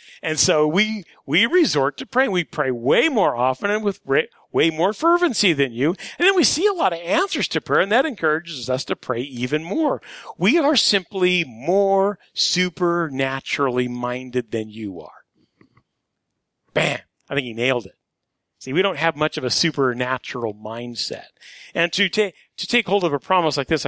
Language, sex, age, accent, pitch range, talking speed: English, male, 40-59, American, 130-195 Hz, 185 wpm